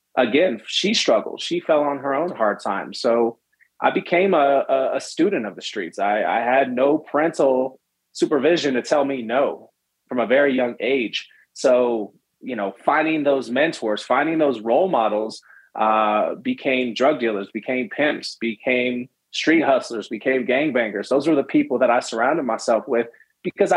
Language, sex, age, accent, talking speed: English, male, 30-49, American, 165 wpm